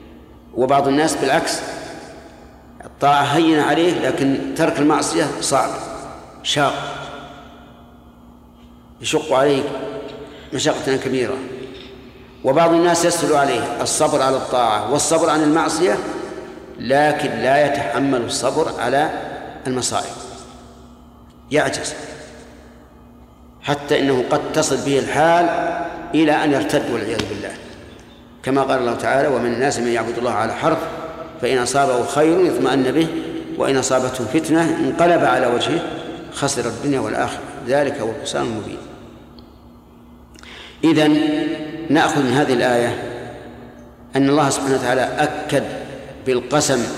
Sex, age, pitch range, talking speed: male, 50-69, 120-155 Hz, 105 wpm